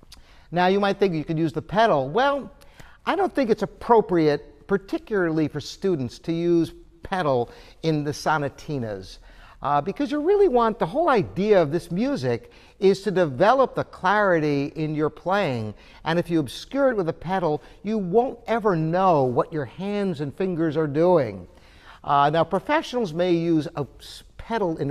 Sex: male